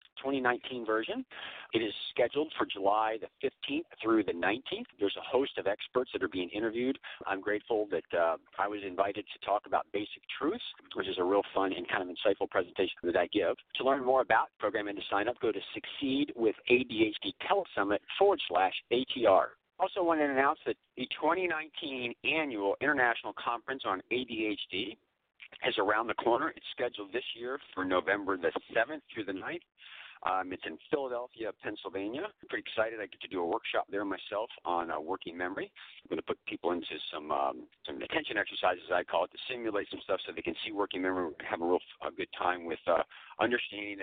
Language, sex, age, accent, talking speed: English, male, 50-69, American, 200 wpm